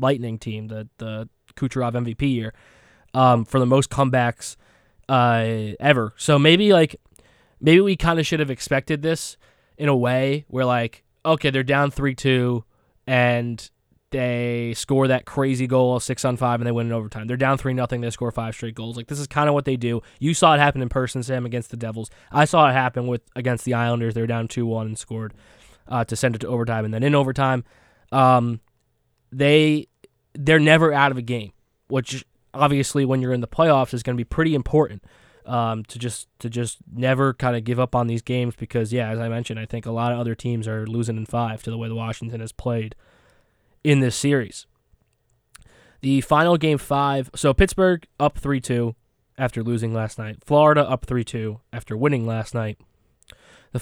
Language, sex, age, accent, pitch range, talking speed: English, male, 20-39, American, 115-135 Hz, 200 wpm